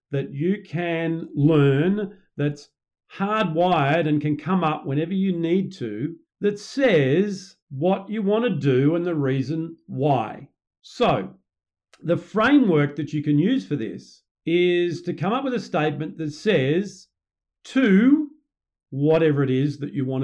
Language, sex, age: English, male, 50-69